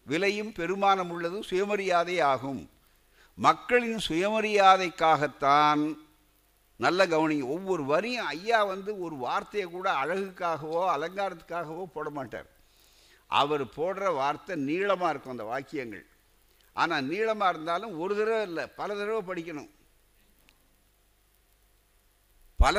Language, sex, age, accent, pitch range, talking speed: Tamil, male, 60-79, native, 145-190 Hz, 95 wpm